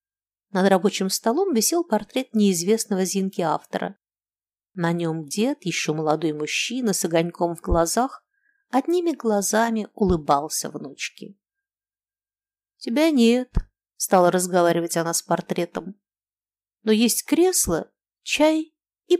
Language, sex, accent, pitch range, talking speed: Russian, female, native, 170-260 Hz, 105 wpm